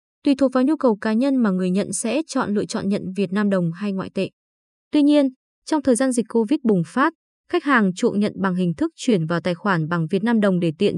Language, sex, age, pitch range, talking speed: Vietnamese, female, 20-39, 185-255 Hz, 255 wpm